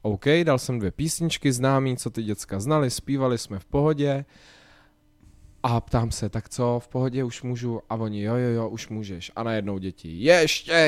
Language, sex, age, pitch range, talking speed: Czech, male, 20-39, 100-125 Hz, 190 wpm